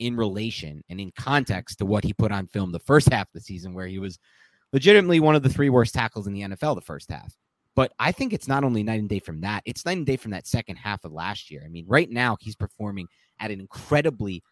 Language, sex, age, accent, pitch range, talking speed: English, male, 30-49, American, 105-150 Hz, 265 wpm